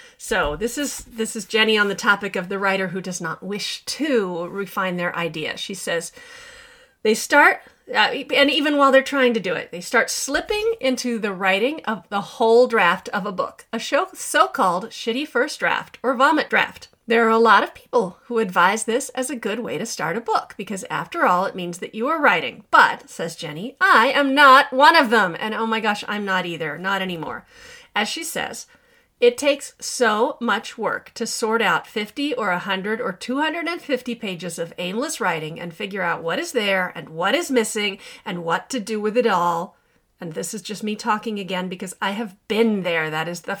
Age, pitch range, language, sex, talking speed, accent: 40-59, 195-275 Hz, English, female, 210 wpm, American